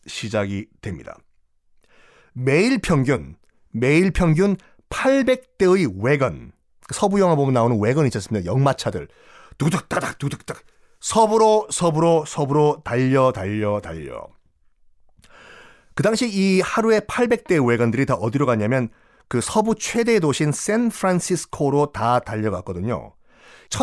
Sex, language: male, Korean